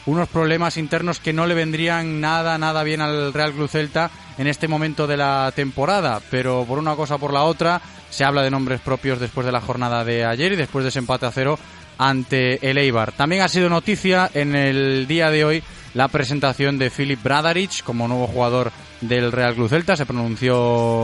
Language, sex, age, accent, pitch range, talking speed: Spanish, male, 20-39, Spanish, 125-155 Hz, 205 wpm